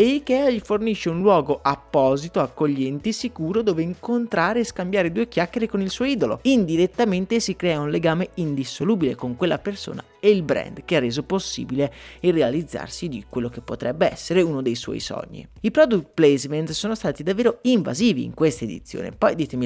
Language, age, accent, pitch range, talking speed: Italian, 30-49, native, 125-190 Hz, 180 wpm